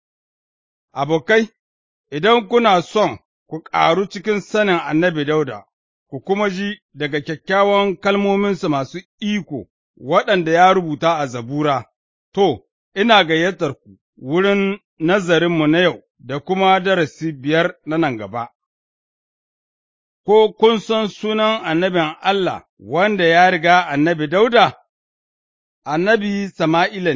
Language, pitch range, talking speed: English, 155-195 Hz, 100 wpm